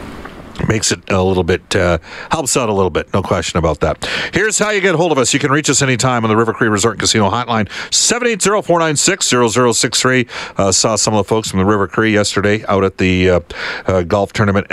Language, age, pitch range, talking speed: English, 50-69, 100-125 Hz, 225 wpm